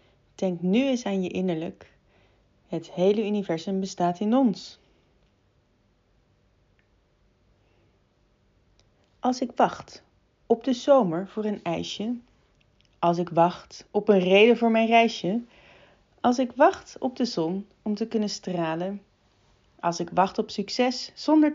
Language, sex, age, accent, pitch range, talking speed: Dutch, female, 30-49, Dutch, 165-225 Hz, 130 wpm